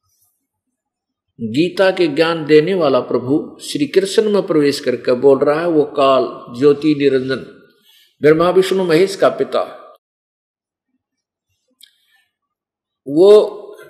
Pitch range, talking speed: 145-215 Hz, 105 wpm